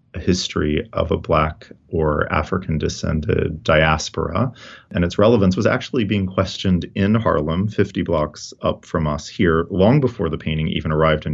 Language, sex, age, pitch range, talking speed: English, male, 30-49, 80-95 Hz, 155 wpm